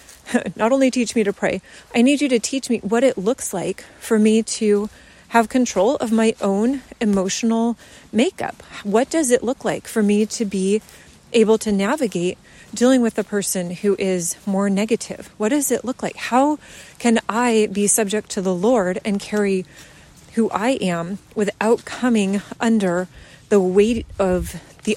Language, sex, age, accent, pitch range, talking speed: English, female, 30-49, American, 195-250 Hz, 170 wpm